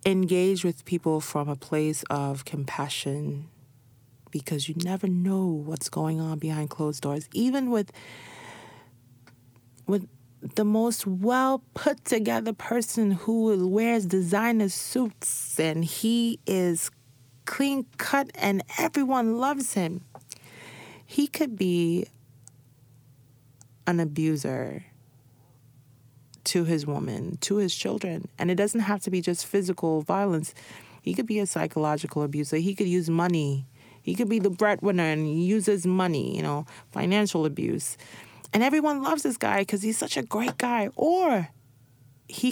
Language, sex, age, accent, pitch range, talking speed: English, female, 30-49, American, 130-205 Hz, 130 wpm